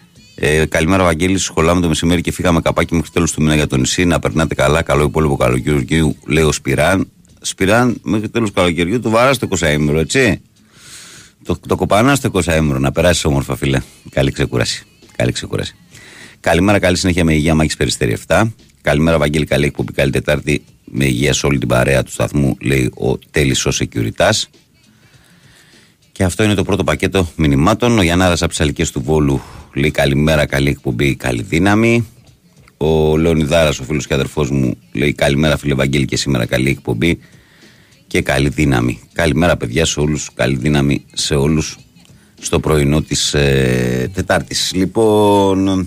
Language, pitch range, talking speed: Greek, 70-90 Hz, 155 wpm